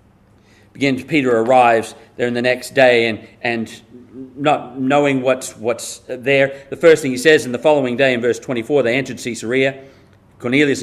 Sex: male